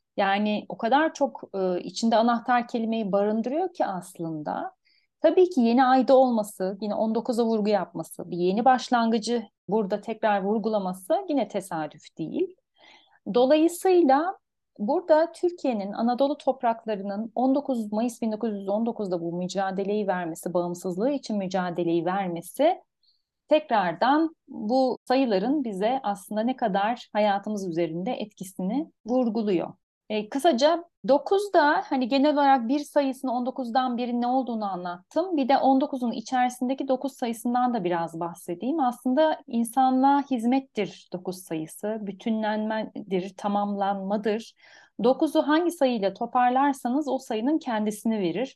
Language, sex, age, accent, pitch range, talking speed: Turkish, female, 40-59, native, 205-275 Hz, 110 wpm